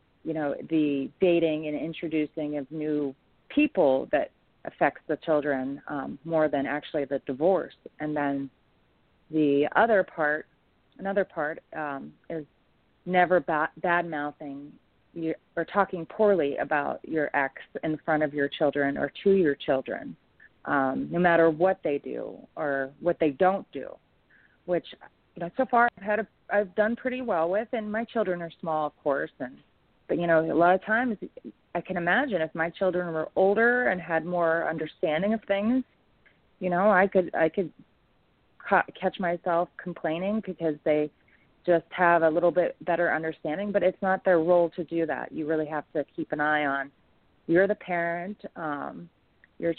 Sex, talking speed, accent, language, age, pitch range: female, 165 wpm, American, English, 30-49, 155-190 Hz